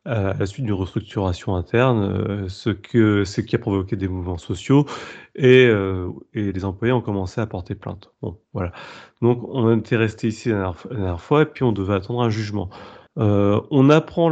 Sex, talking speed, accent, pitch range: male, 200 wpm, French, 100-125 Hz